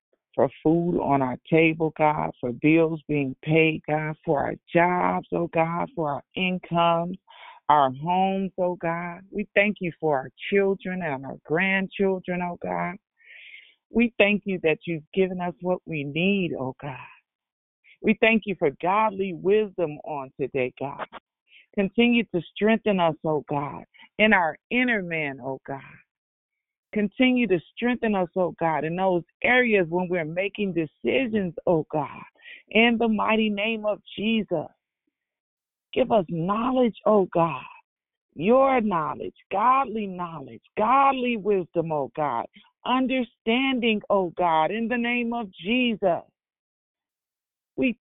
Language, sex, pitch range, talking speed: English, female, 160-215 Hz, 135 wpm